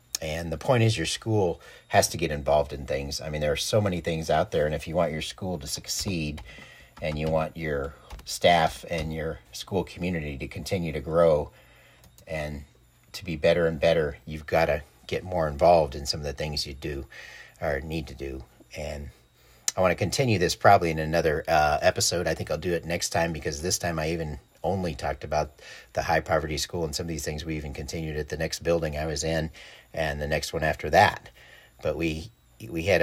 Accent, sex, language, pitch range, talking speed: American, male, English, 75-85 Hz, 220 wpm